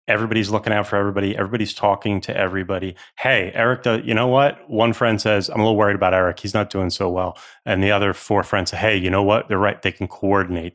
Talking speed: 240 wpm